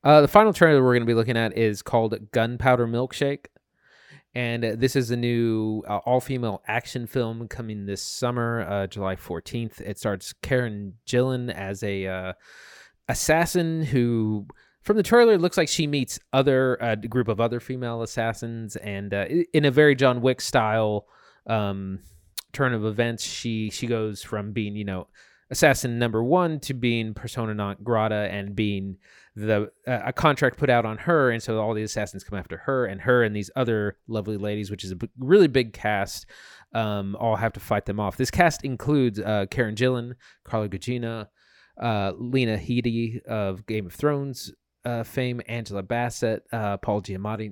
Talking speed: 180 wpm